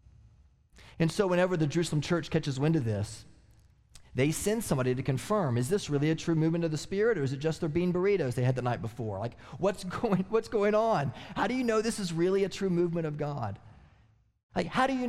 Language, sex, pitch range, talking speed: English, male, 120-185 Hz, 230 wpm